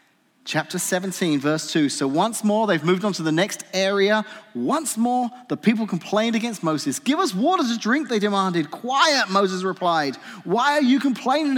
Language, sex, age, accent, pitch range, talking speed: English, male, 40-59, British, 145-220 Hz, 180 wpm